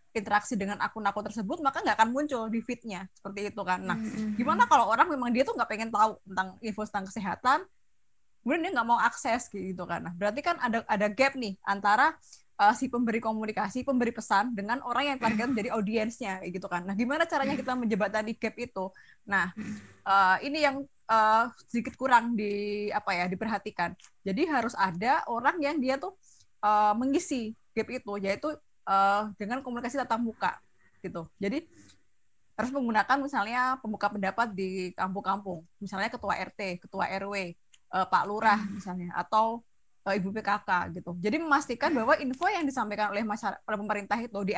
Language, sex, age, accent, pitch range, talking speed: Indonesian, female, 20-39, native, 200-250 Hz, 170 wpm